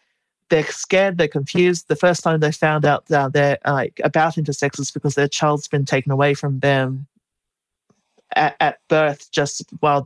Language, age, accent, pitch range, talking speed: English, 30-49, Australian, 145-165 Hz, 175 wpm